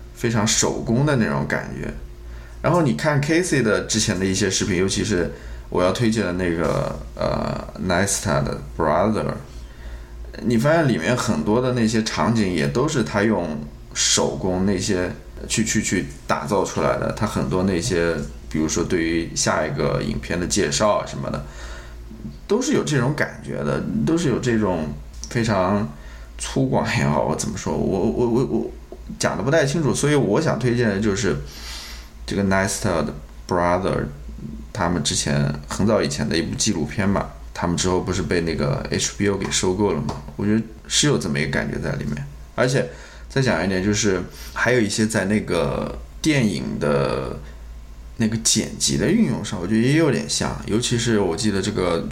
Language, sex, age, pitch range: Chinese, male, 20-39, 70-105 Hz